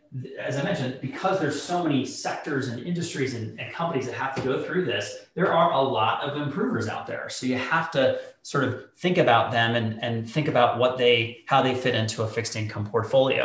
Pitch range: 115-145 Hz